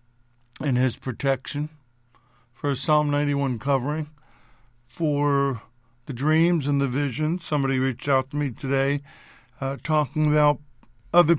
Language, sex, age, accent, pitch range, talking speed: English, male, 50-69, American, 130-155 Hz, 125 wpm